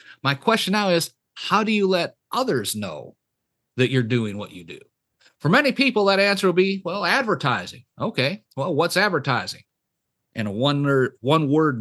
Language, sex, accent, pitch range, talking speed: English, male, American, 130-185 Hz, 165 wpm